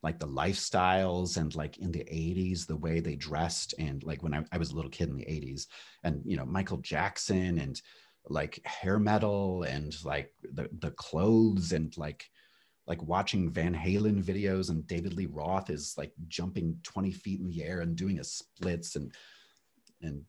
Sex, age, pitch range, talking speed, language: male, 30-49, 75-90 Hz, 185 wpm, English